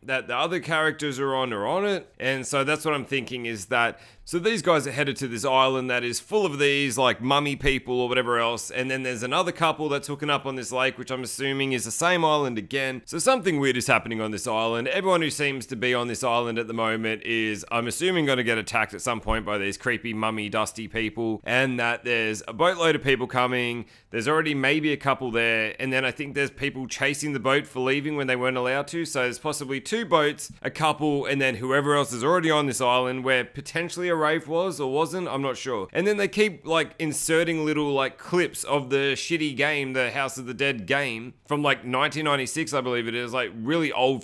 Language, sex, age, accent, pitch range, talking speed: English, male, 30-49, Australian, 120-150 Hz, 235 wpm